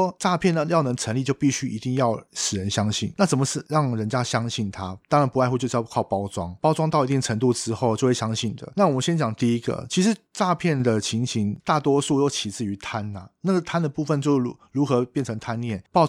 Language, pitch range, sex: Chinese, 110-140 Hz, male